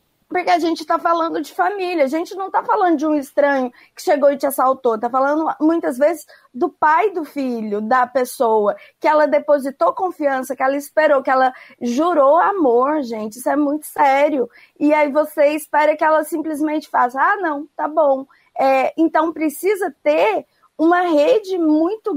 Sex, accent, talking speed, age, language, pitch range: female, Brazilian, 175 wpm, 20-39, Portuguese, 270-325 Hz